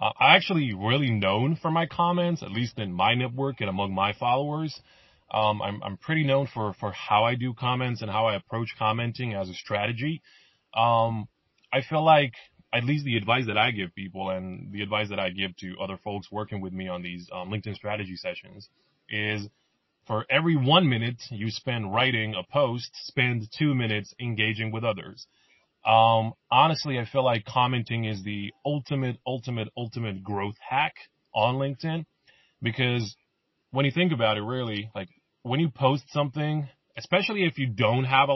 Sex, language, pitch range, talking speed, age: male, English, 105-140 Hz, 180 wpm, 20-39